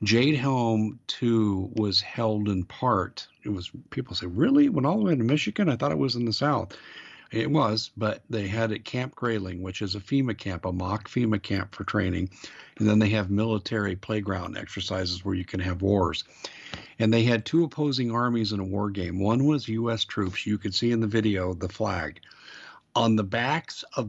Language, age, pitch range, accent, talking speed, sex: English, 50-69, 100-115 Hz, American, 205 wpm, male